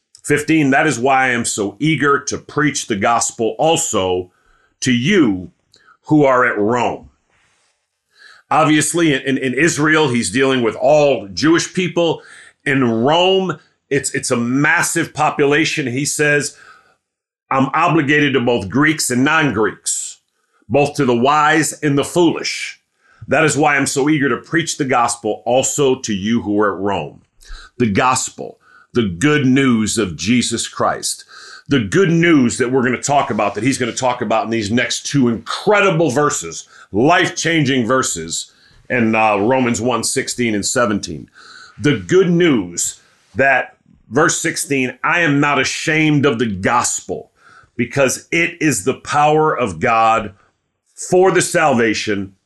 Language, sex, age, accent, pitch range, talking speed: English, male, 50-69, American, 120-155 Hz, 150 wpm